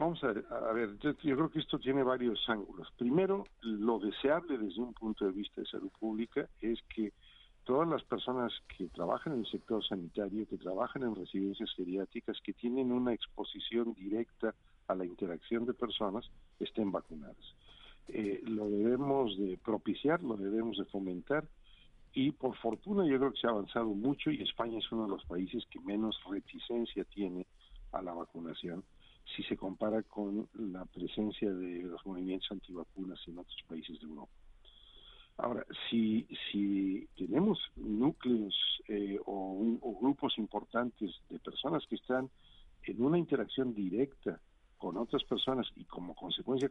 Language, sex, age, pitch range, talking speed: Spanish, male, 50-69, 100-125 Hz, 155 wpm